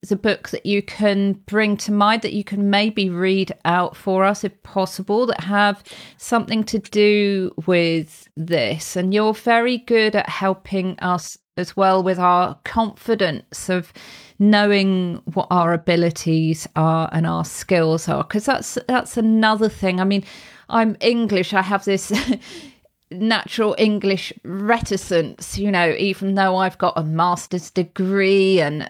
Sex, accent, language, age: female, British, English, 40-59